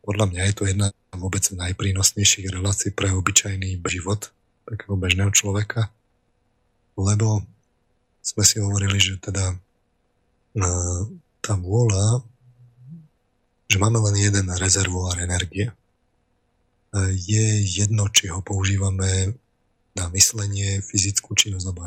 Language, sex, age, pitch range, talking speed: Slovak, male, 30-49, 95-110 Hz, 105 wpm